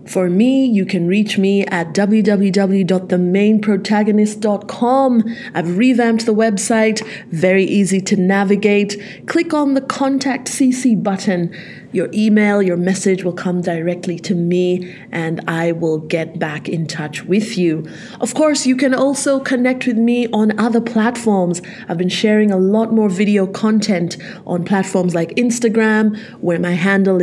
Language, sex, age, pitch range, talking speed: English, female, 30-49, 185-230 Hz, 145 wpm